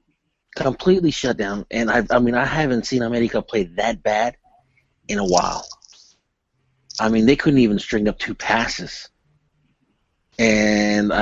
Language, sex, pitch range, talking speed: English, male, 105-120 Hz, 145 wpm